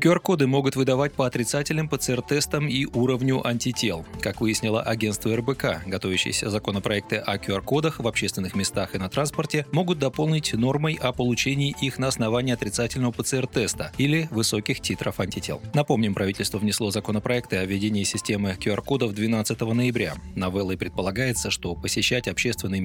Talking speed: 135 wpm